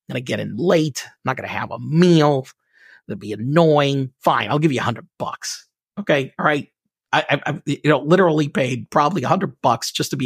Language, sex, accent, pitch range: English, male, American, 150-200 Hz